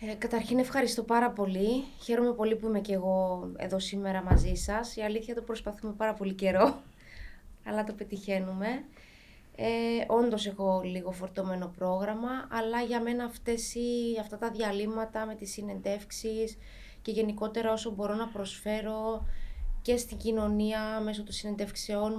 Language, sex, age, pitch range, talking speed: Greek, female, 20-39, 195-240 Hz, 135 wpm